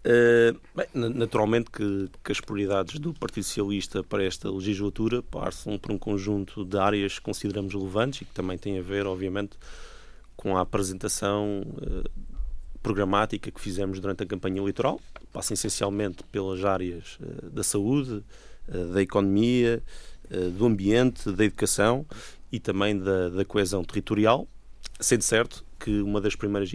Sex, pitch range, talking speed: male, 95-105 Hz, 150 wpm